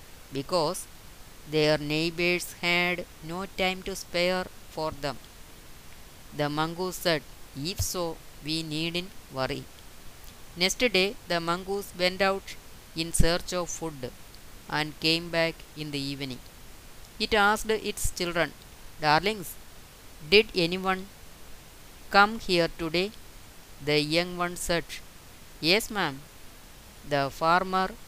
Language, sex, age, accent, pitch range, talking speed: Malayalam, female, 20-39, native, 150-190 Hz, 115 wpm